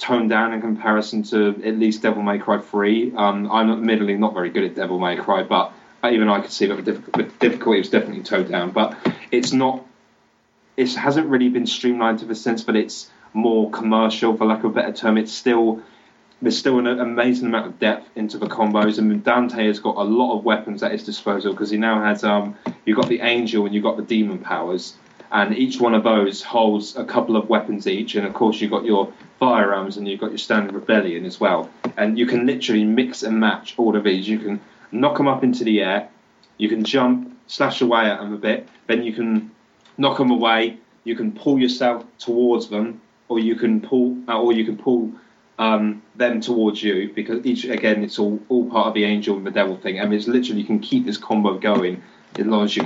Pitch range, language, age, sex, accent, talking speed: 105-120 Hz, English, 20-39, male, British, 225 wpm